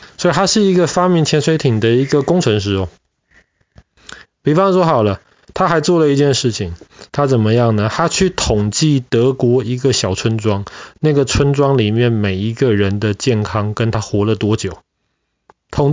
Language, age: Chinese, 20-39